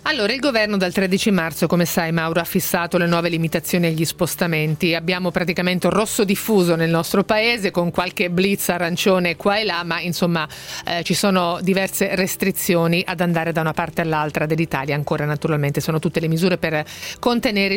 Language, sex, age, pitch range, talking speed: Italian, female, 40-59, 170-200 Hz, 175 wpm